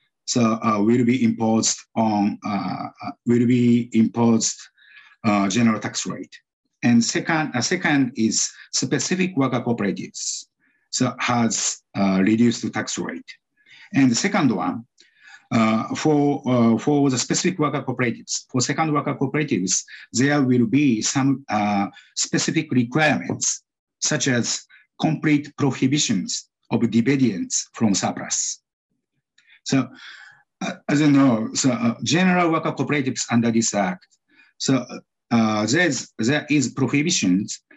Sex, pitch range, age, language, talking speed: male, 115-150 Hz, 50-69, English, 125 wpm